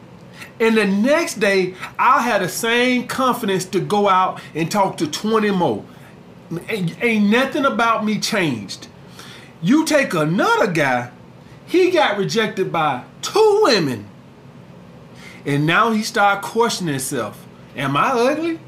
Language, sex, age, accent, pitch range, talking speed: English, male, 40-59, American, 185-265 Hz, 135 wpm